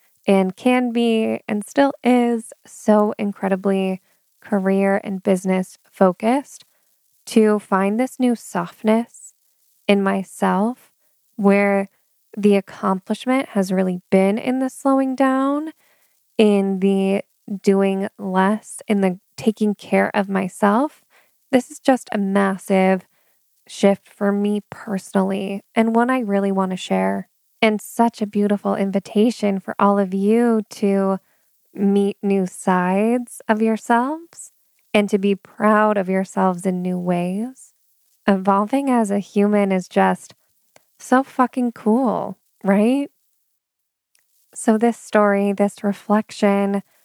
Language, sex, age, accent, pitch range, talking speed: English, female, 10-29, American, 195-225 Hz, 120 wpm